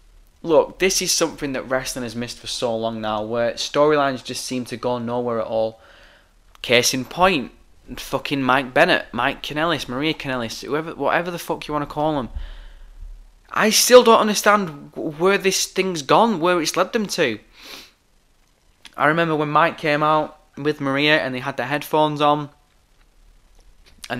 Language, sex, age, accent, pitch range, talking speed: English, male, 10-29, British, 120-155 Hz, 165 wpm